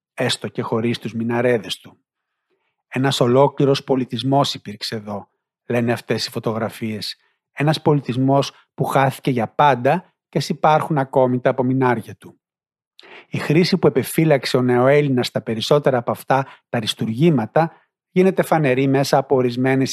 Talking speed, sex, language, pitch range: 135 wpm, male, Greek, 125-155 Hz